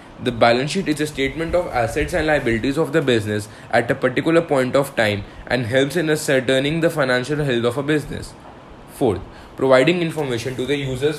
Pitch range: 120-145 Hz